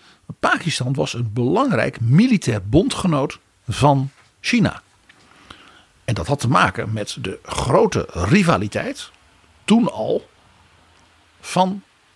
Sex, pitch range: male, 105-155 Hz